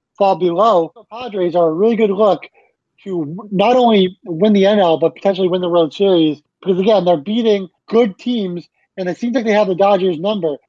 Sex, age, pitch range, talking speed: male, 20-39, 170-205 Hz, 200 wpm